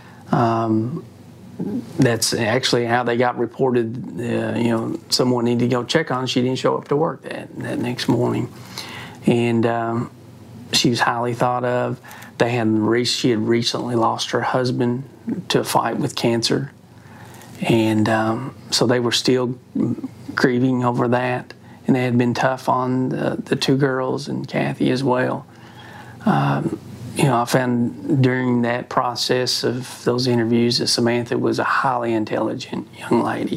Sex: male